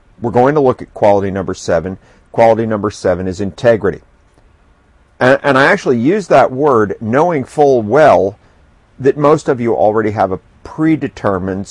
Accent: American